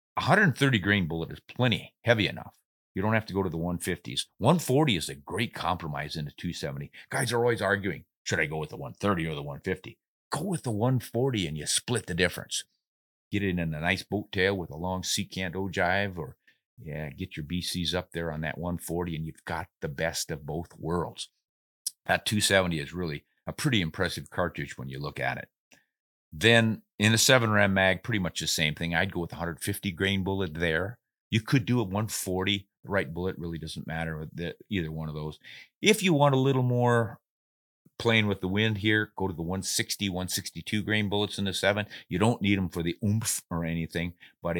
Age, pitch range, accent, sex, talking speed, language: 50-69, 85-105 Hz, American, male, 210 wpm, English